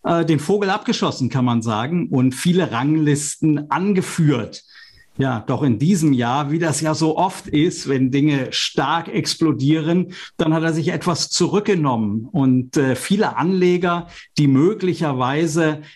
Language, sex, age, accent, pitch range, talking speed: German, male, 50-69, German, 135-180 Hz, 135 wpm